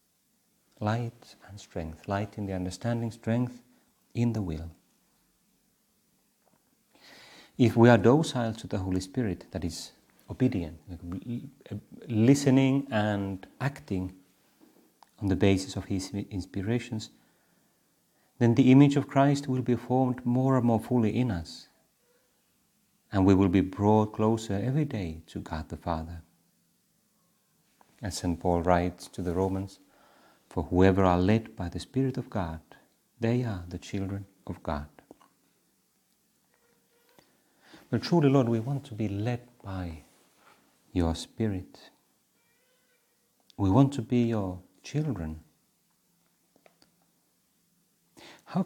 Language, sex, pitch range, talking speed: Finnish, male, 90-120 Hz, 120 wpm